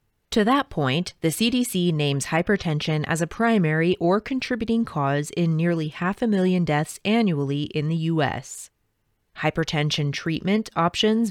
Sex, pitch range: female, 150-195 Hz